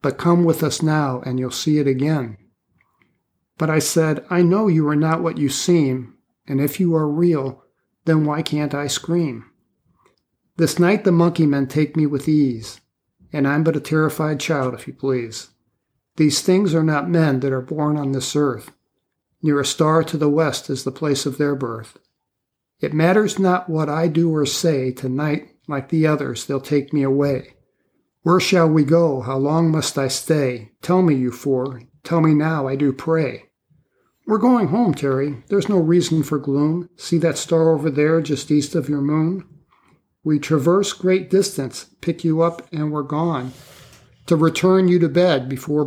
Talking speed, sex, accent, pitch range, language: 185 wpm, male, American, 135-165 Hz, English